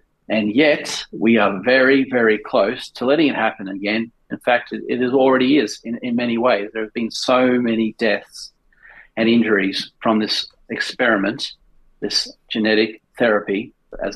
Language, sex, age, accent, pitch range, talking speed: English, male, 40-59, Australian, 110-130 Hz, 155 wpm